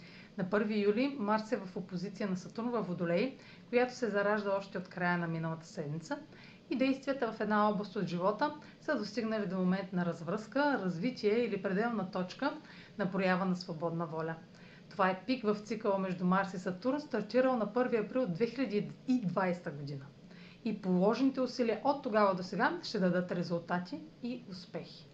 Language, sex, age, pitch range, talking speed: Bulgarian, female, 40-59, 185-235 Hz, 165 wpm